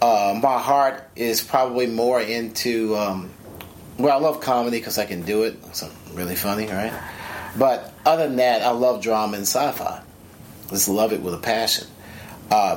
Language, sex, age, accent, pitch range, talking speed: English, male, 30-49, American, 95-130 Hz, 180 wpm